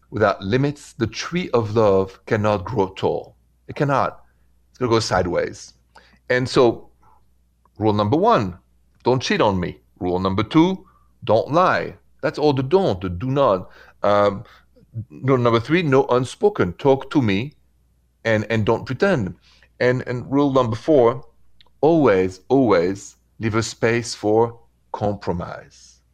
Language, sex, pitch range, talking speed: English, male, 90-130 Hz, 140 wpm